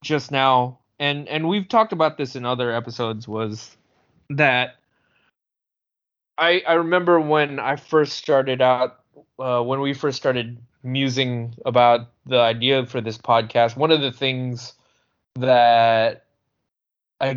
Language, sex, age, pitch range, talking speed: English, male, 20-39, 120-145 Hz, 135 wpm